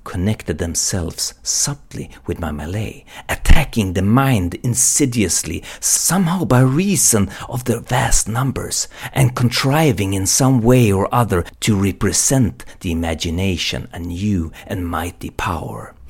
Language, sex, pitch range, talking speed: Swedish, male, 85-125 Hz, 125 wpm